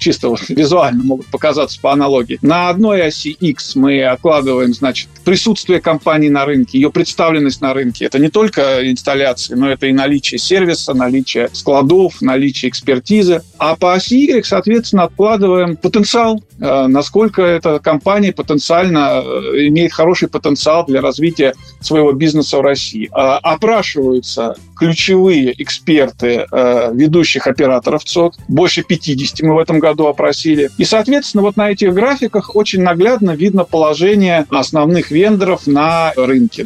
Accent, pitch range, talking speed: native, 135-180 Hz, 135 wpm